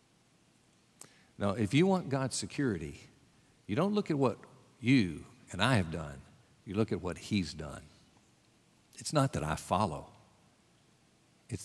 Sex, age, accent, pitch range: male, 60-79, American, 105-170 Hz